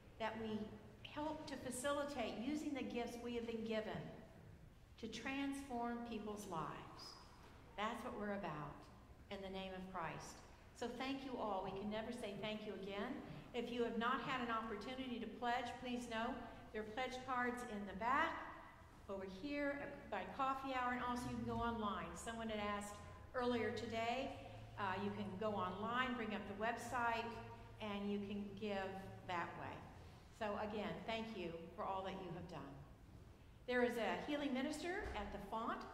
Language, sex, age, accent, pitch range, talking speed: English, female, 50-69, American, 210-255 Hz, 170 wpm